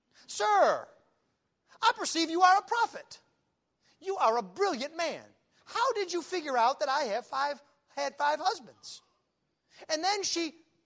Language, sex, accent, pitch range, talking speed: English, male, American, 245-350 Hz, 150 wpm